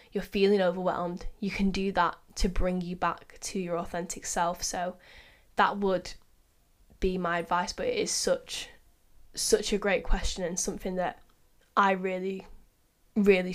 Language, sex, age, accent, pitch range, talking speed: English, female, 10-29, British, 180-210 Hz, 155 wpm